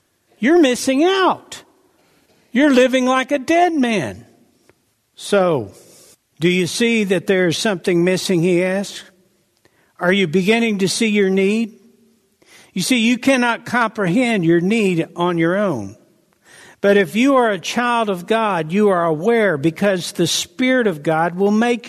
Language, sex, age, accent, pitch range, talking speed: English, male, 60-79, American, 185-245 Hz, 150 wpm